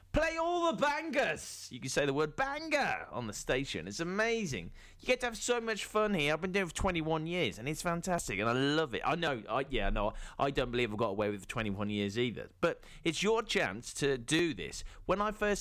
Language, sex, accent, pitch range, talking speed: English, male, British, 115-180 Hz, 245 wpm